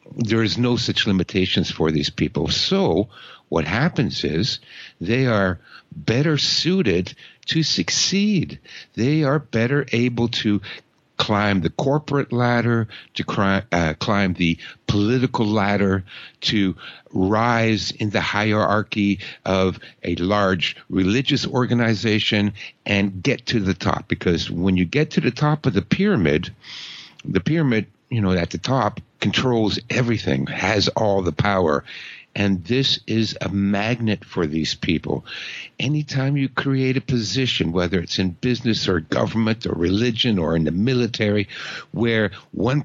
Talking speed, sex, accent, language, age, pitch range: 135 wpm, male, American, English, 60-79, 95-130 Hz